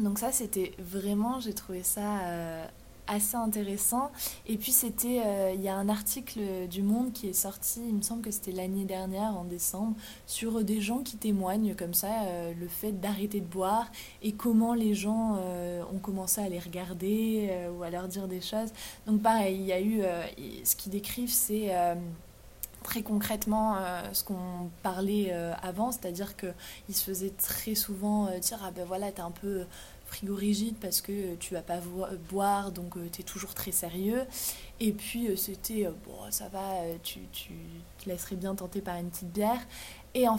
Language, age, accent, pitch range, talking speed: French, 20-39, French, 185-220 Hz, 195 wpm